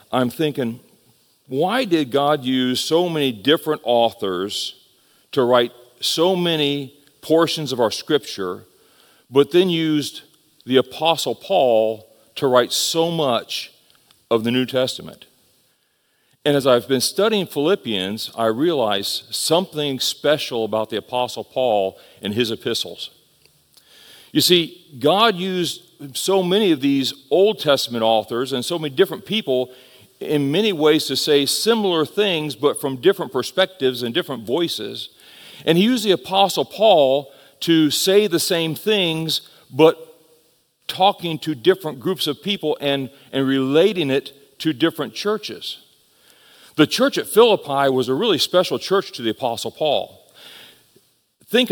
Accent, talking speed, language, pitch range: American, 135 wpm, English, 130-175 Hz